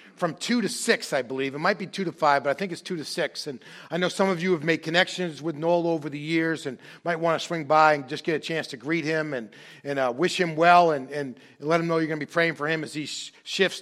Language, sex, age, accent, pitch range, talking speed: English, male, 40-59, American, 150-195 Hz, 295 wpm